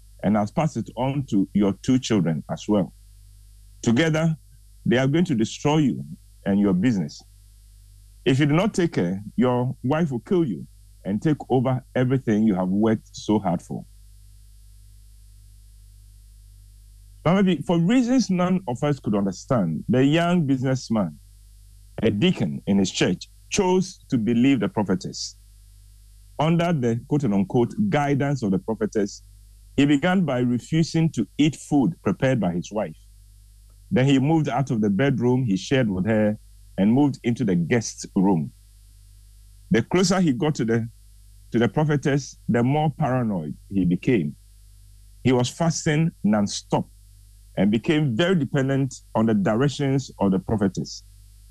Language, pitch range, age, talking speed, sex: English, 100-140 Hz, 50-69, 145 wpm, male